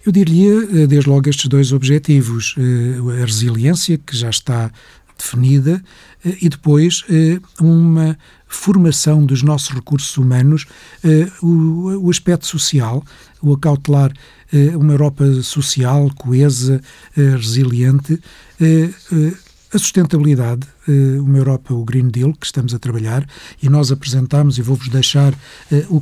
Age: 50-69